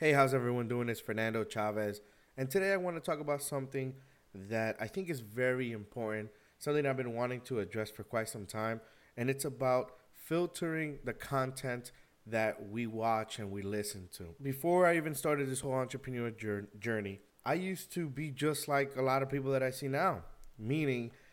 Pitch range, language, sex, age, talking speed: 110-145 Hz, English, male, 20-39, 190 wpm